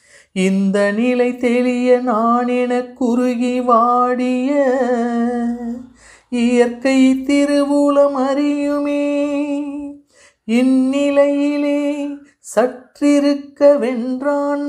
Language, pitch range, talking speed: Tamil, 190-245 Hz, 40 wpm